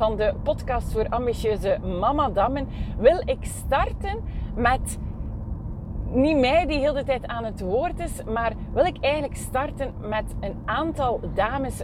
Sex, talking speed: female, 145 wpm